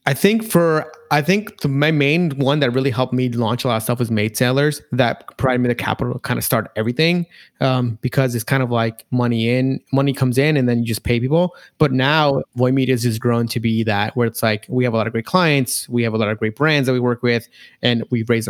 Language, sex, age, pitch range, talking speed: English, male, 30-49, 115-140 Hz, 260 wpm